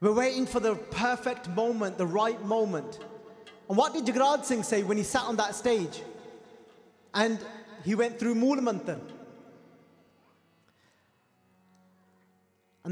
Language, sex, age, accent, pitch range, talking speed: English, male, 20-39, British, 155-225 Hz, 130 wpm